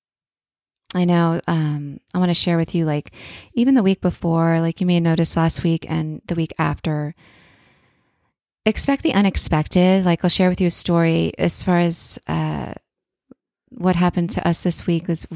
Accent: American